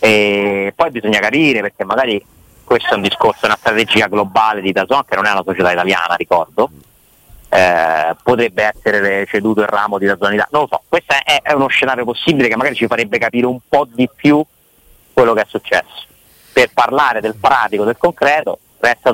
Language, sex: Italian, male